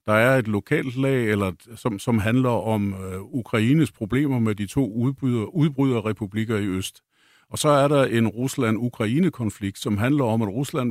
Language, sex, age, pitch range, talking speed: Danish, male, 50-69, 105-130 Hz, 165 wpm